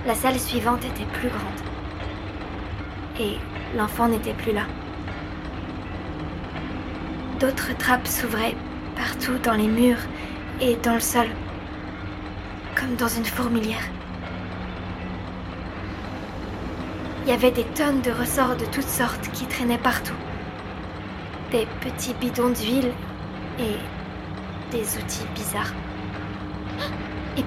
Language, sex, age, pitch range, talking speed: French, female, 20-39, 90-105 Hz, 105 wpm